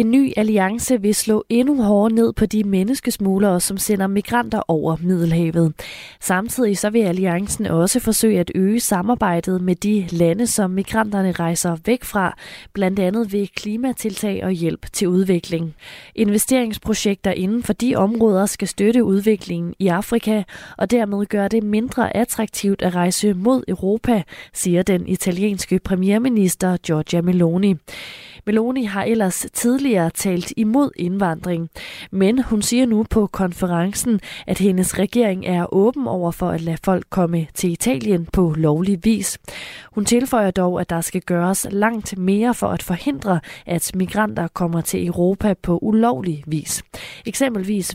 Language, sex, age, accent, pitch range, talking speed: Danish, female, 20-39, native, 180-220 Hz, 145 wpm